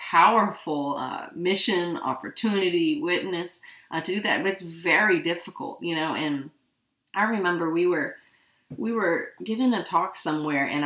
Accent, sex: American, female